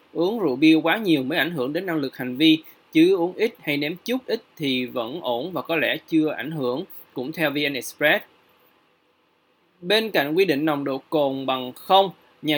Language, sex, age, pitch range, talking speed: Vietnamese, male, 20-39, 140-175 Hz, 200 wpm